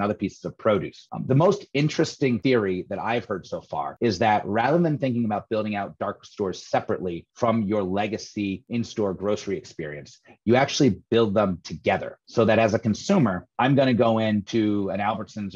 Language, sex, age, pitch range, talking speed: English, male, 30-49, 100-115 Hz, 185 wpm